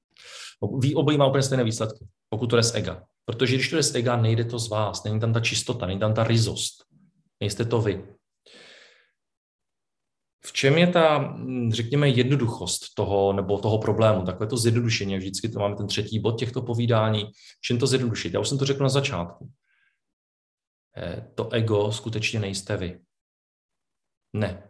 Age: 40-59